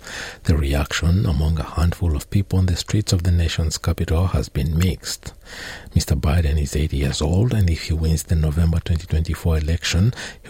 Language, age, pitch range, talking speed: English, 60-79, 75-95 Hz, 185 wpm